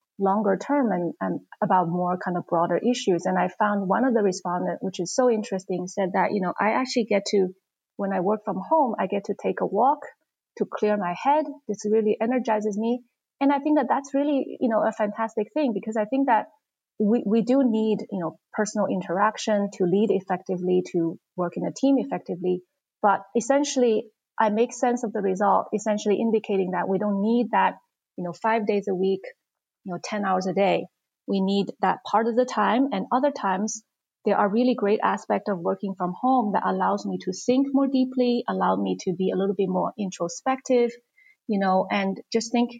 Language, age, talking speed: English, 30-49, 205 wpm